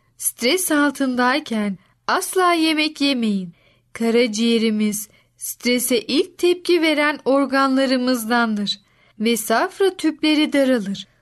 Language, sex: Turkish, female